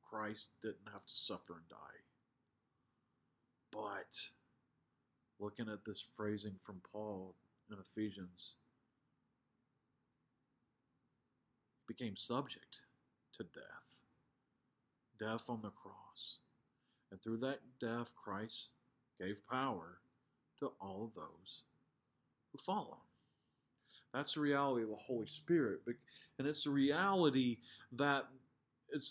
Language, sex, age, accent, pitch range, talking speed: English, male, 40-59, American, 110-155 Hz, 105 wpm